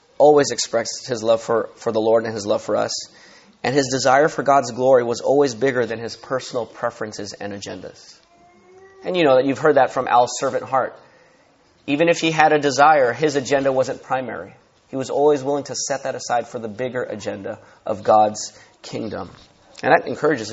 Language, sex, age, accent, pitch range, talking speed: English, male, 30-49, American, 125-170 Hz, 195 wpm